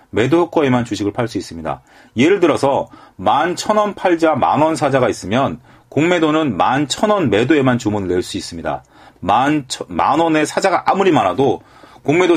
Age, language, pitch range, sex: 40-59, Korean, 120-175 Hz, male